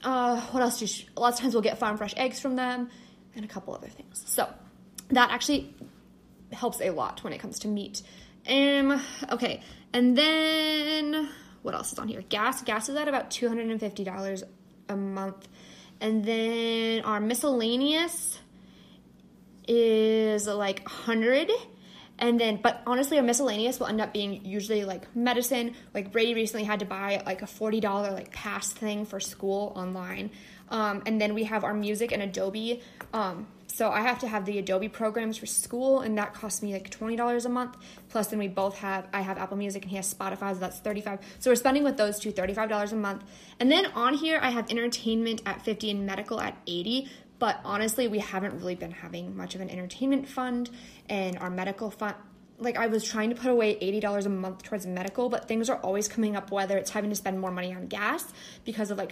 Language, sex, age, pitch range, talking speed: English, female, 20-39, 200-245 Hz, 200 wpm